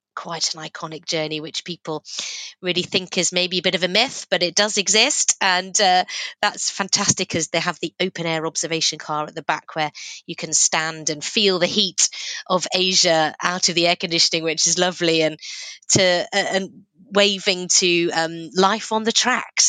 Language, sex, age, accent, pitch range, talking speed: English, female, 30-49, British, 155-190 Hz, 190 wpm